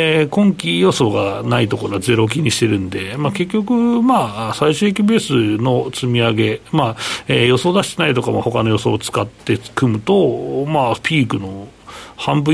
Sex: male